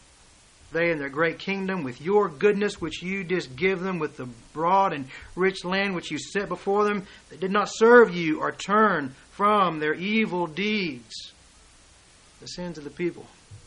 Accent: American